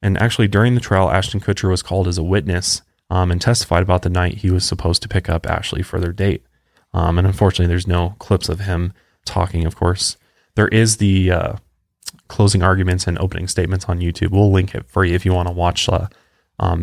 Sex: male